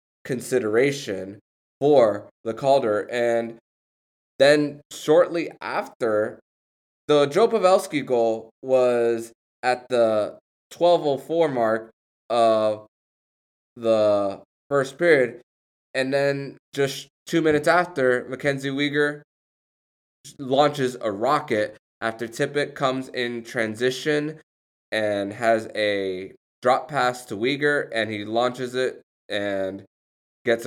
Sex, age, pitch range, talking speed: male, 20-39, 105-135 Hz, 100 wpm